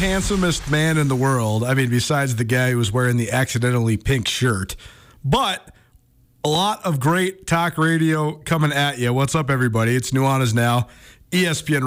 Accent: American